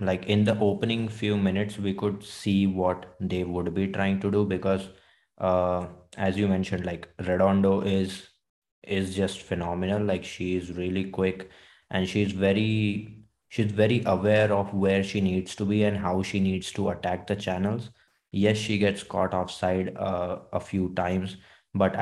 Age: 20-39